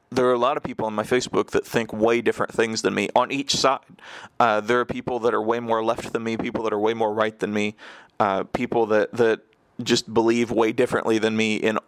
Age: 30-49